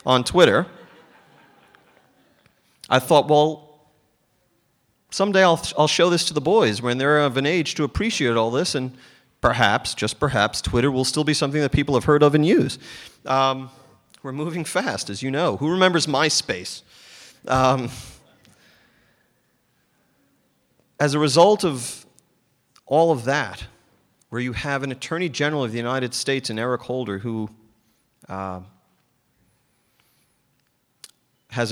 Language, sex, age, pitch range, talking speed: English, male, 30-49, 110-140 Hz, 140 wpm